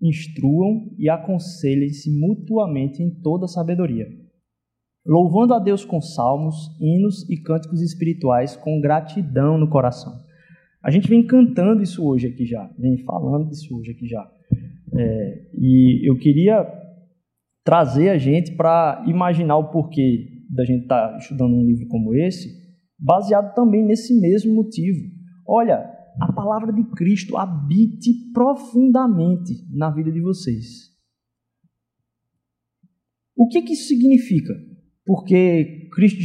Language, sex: Portuguese, male